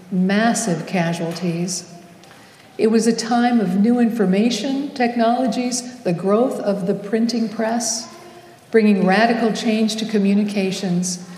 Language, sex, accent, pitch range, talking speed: English, female, American, 185-225 Hz, 110 wpm